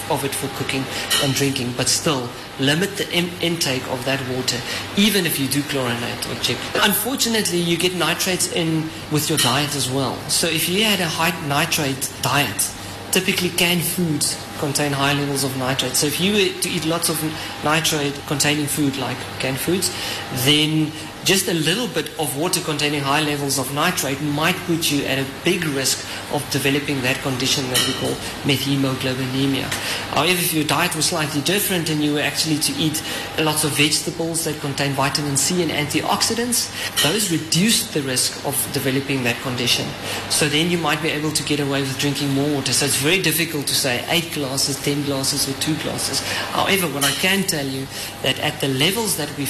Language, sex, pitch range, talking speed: English, male, 135-165 Hz, 190 wpm